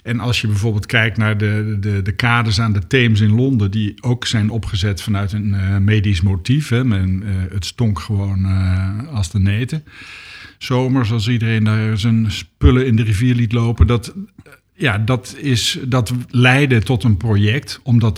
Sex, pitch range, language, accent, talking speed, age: male, 105-125 Hz, Dutch, Dutch, 180 wpm, 50-69